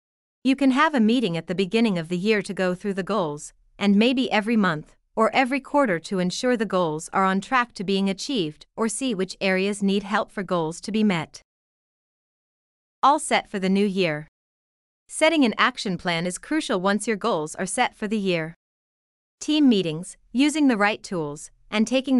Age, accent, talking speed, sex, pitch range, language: 30-49, American, 195 wpm, female, 180-245 Hz, English